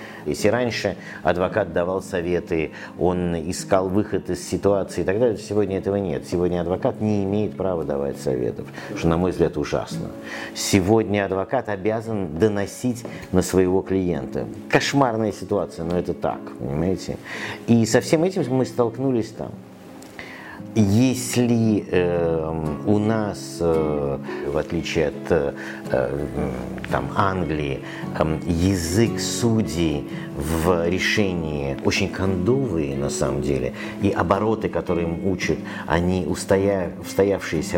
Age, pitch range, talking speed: 50-69, 85-110 Hz, 115 wpm